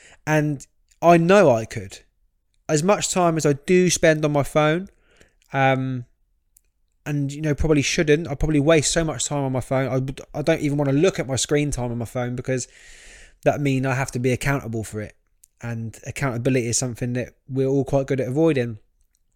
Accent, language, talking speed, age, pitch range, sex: British, English, 200 wpm, 20-39, 125-155 Hz, male